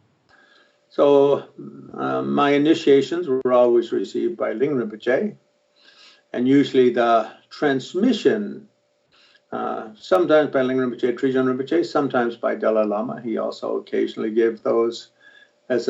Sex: male